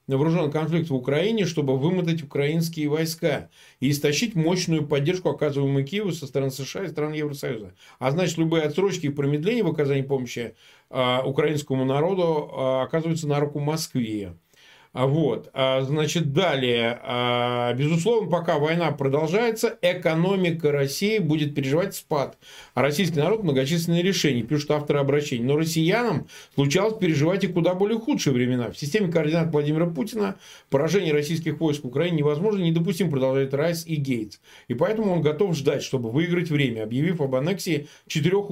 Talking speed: 150 wpm